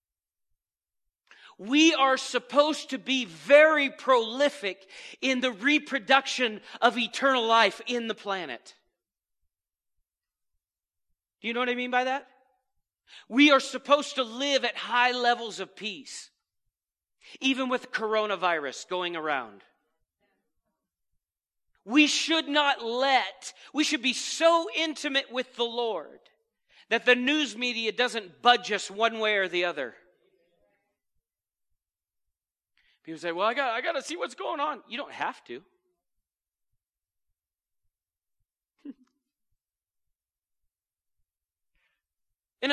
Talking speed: 110 wpm